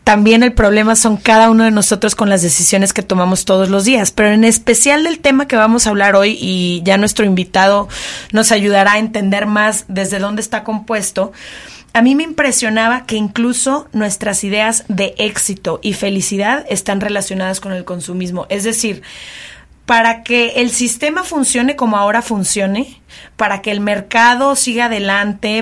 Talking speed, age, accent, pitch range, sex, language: 170 wpm, 30-49, Mexican, 205-240 Hz, female, Spanish